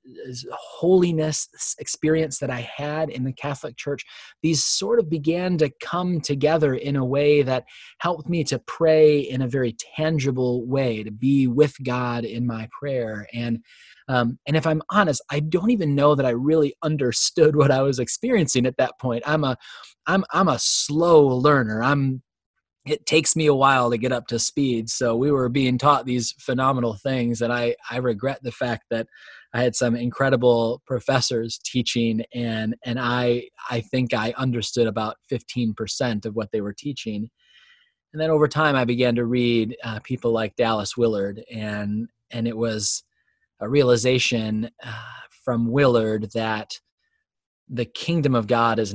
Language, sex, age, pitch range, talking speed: English, male, 20-39, 115-145 Hz, 170 wpm